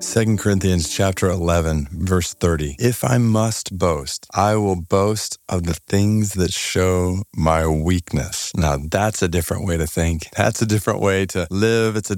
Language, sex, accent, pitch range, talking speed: English, male, American, 95-130 Hz, 170 wpm